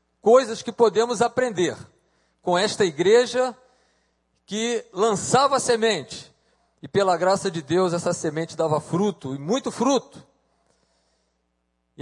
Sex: male